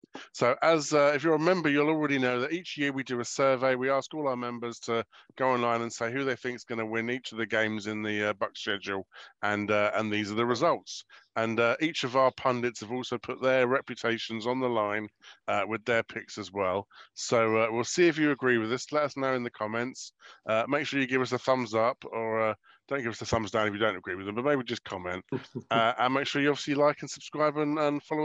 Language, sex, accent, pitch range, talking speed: English, male, British, 115-145 Hz, 265 wpm